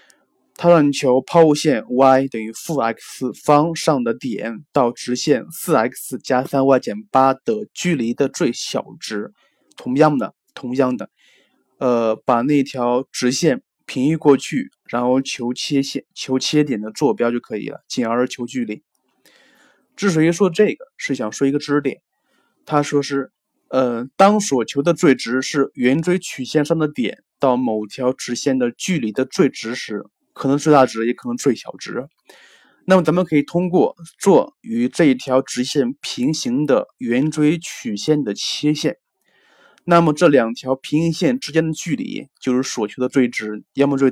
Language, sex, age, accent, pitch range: Chinese, male, 20-39, native, 125-160 Hz